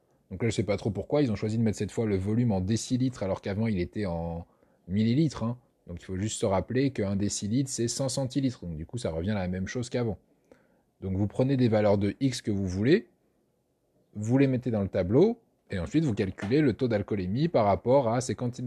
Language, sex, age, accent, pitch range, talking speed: French, male, 20-39, French, 105-140 Hz, 240 wpm